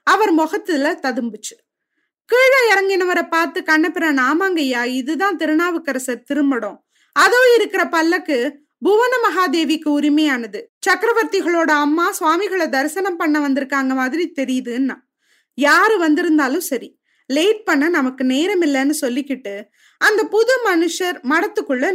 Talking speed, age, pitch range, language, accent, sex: 100 wpm, 20-39, 275-375 Hz, Tamil, native, female